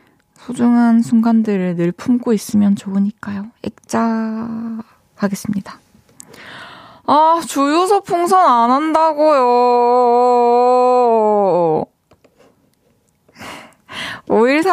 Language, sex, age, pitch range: Korean, female, 20-39, 200-255 Hz